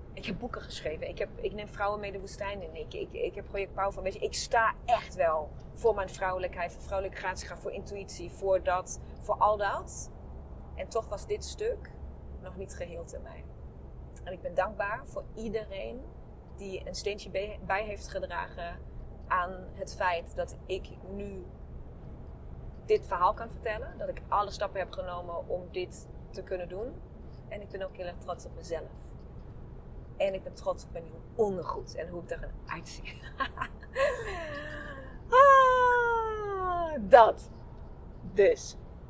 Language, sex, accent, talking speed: Dutch, female, Dutch, 160 wpm